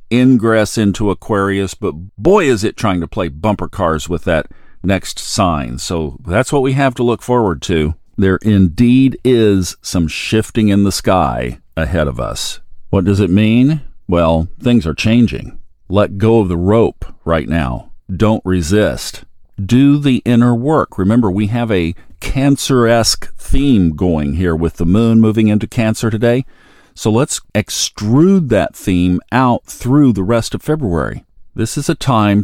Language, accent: English, American